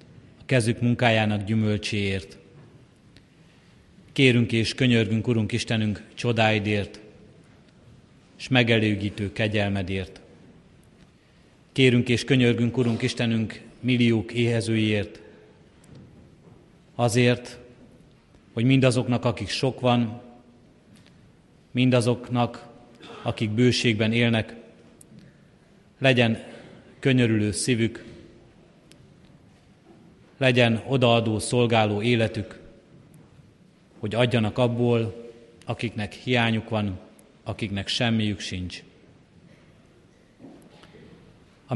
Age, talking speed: 40-59, 65 wpm